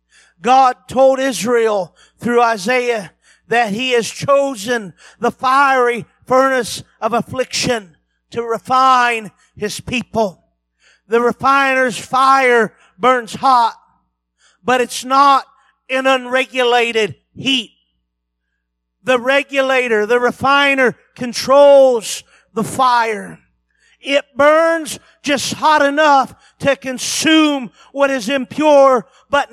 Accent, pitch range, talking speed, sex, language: American, 235-295 Hz, 95 wpm, male, English